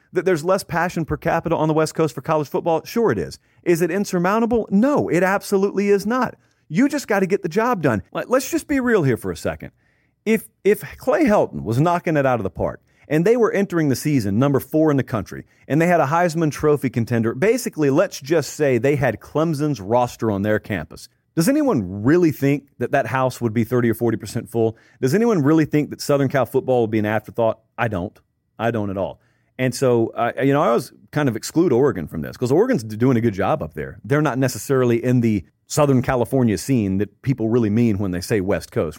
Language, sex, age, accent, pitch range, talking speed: English, male, 40-59, American, 115-165 Hz, 230 wpm